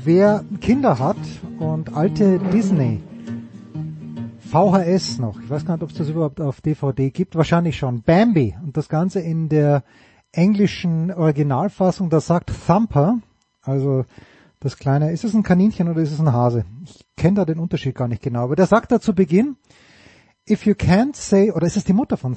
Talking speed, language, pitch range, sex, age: 180 wpm, German, 145-200 Hz, male, 30-49